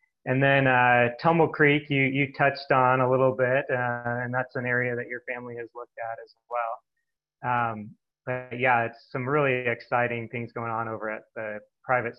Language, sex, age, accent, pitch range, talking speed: English, male, 30-49, American, 110-125 Hz, 190 wpm